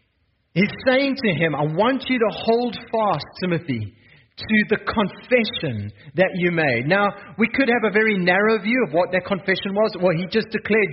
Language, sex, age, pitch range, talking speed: English, male, 40-59, 165-230 Hz, 185 wpm